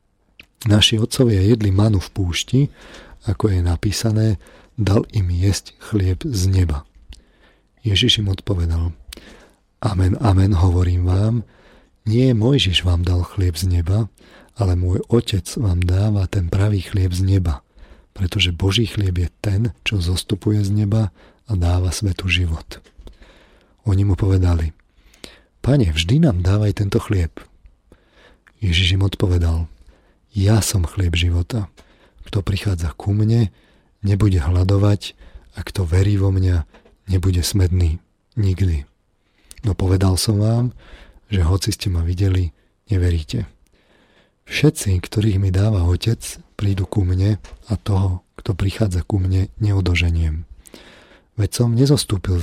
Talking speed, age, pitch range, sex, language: 125 wpm, 40-59, 90-105 Hz, male, Slovak